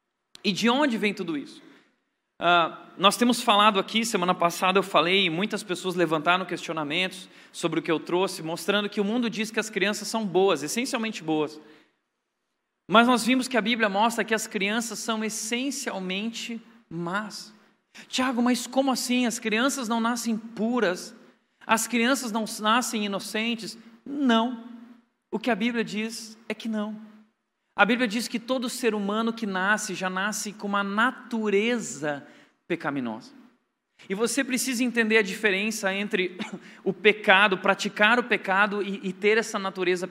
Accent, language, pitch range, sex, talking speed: Brazilian, Portuguese, 190-235 Hz, male, 155 wpm